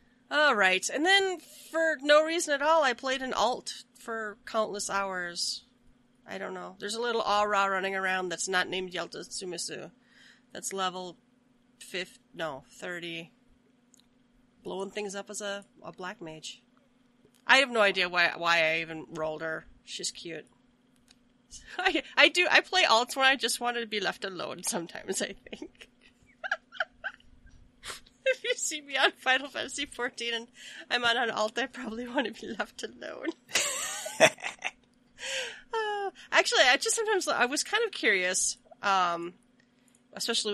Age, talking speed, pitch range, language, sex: 30-49, 155 wpm, 195-270 Hz, English, female